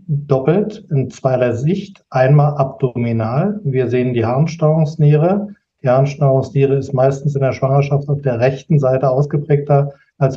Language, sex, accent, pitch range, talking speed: German, male, German, 130-150 Hz, 135 wpm